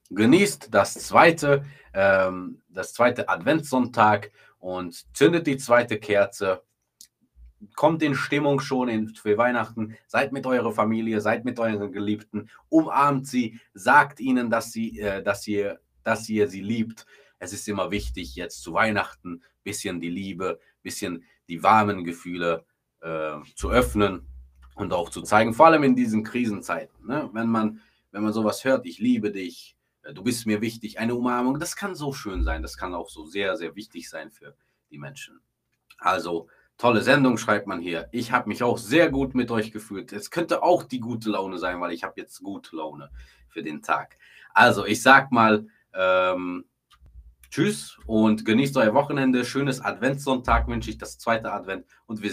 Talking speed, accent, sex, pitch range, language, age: 160 wpm, German, male, 95-125 Hz, German, 30-49